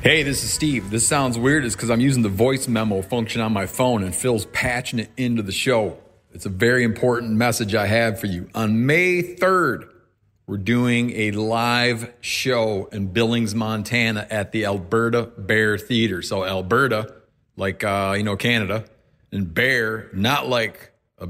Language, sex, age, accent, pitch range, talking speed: English, male, 40-59, American, 105-125 Hz, 175 wpm